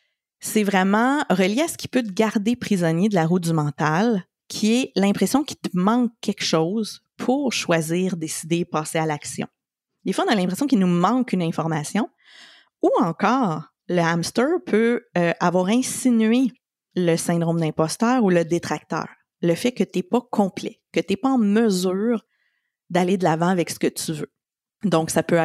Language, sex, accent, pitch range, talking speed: French, female, Canadian, 170-230 Hz, 180 wpm